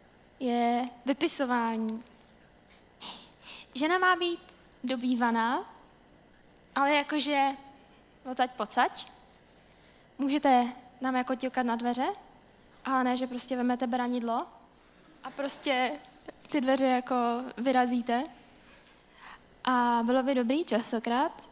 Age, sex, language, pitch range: 10-29, female, Czech, 245-265 Hz